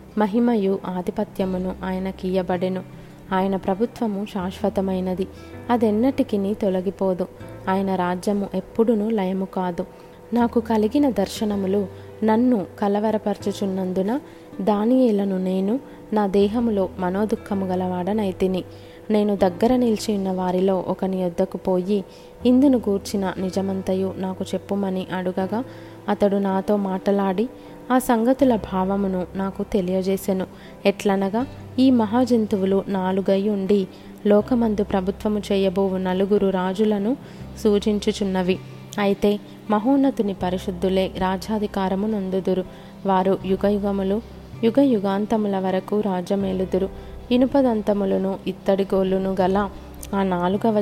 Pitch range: 190-215 Hz